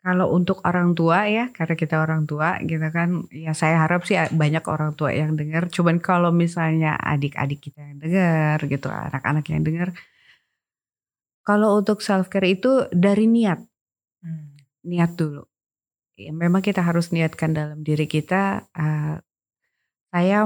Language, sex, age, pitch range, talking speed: Indonesian, female, 30-49, 155-180 Hz, 140 wpm